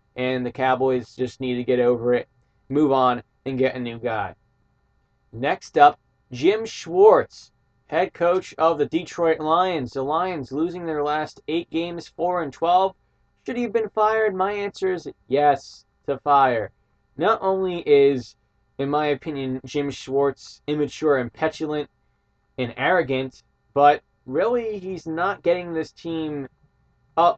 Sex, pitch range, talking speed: male, 130-175 Hz, 150 wpm